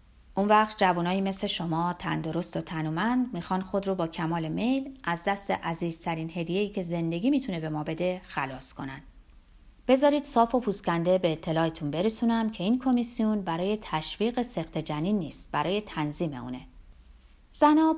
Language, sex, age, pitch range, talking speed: Persian, female, 30-49, 165-250 Hz, 145 wpm